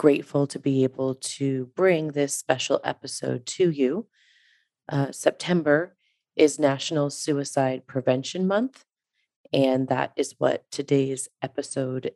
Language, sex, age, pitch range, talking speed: English, female, 30-49, 135-160 Hz, 120 wpm